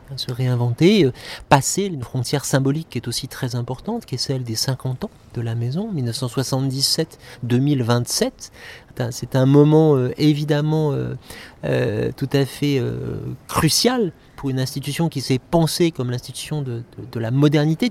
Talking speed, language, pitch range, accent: 135 wpm, French, 130-160 Hz, French